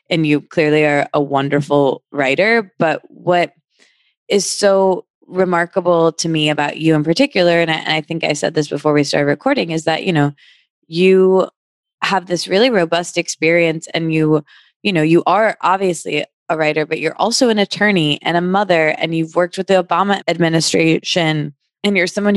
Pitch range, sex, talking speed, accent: 150-180 Hz, female, 180 wpm, American